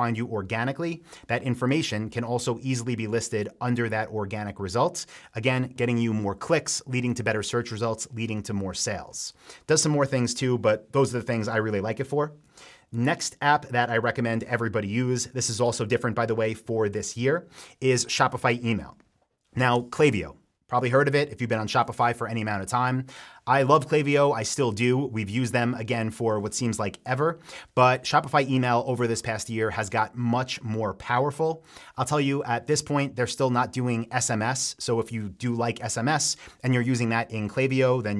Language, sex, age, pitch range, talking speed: English, male, 30-49, 115-135 Hz, 205 wpm